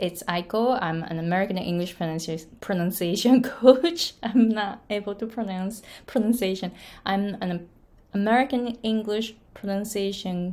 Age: 20-39